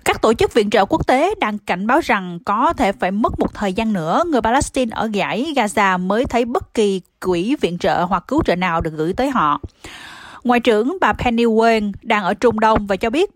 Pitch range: 195-260 Hz